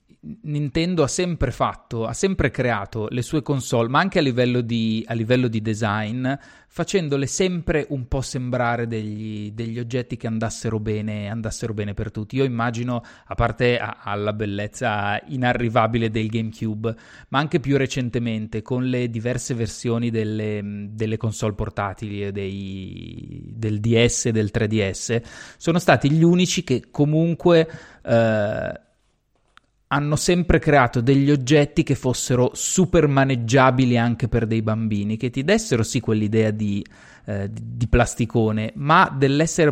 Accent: native